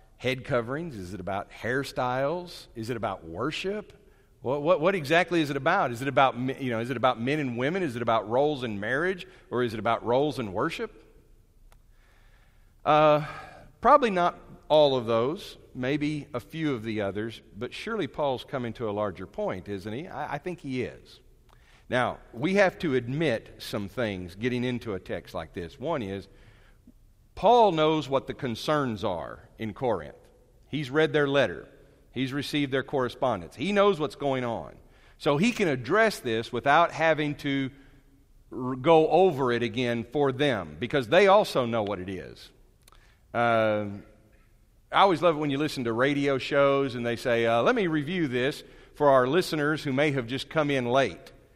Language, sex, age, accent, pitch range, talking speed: English, male, 50-69, American, 115-150 Hz, 180 wpm